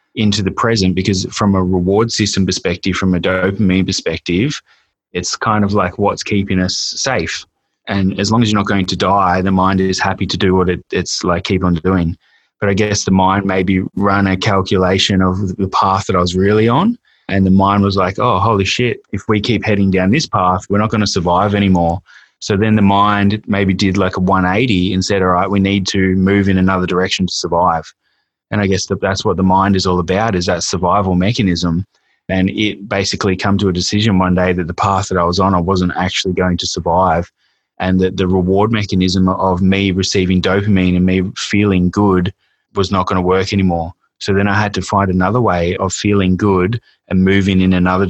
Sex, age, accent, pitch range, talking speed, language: male, 20-39, Australian, 90-100 Hz, 215 wpm, English